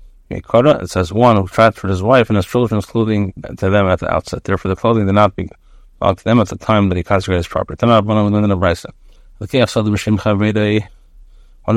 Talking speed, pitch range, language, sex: 200 wpm, 90-110 Hz, English, male